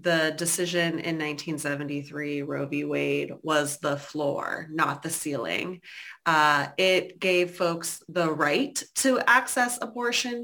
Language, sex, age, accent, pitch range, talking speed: English, female, 30-49, American, 155-180 Hz, 125 wpm